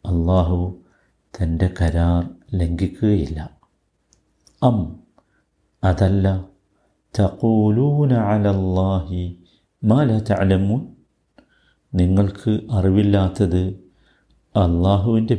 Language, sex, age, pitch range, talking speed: Malayalam, male, 50-69, 85-100 Hz, 40 wpm